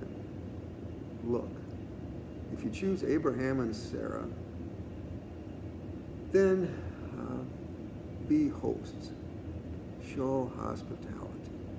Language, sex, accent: English, male, American